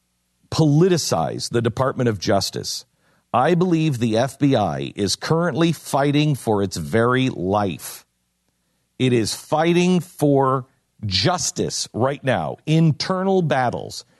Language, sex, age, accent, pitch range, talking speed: English, male, 50-69, American, 105-150 Hz, 105 wpm